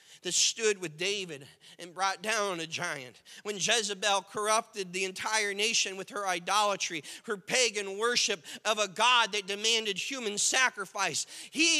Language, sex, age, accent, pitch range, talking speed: English, male, 40-59, American, 200-295 Hz, 145 wpm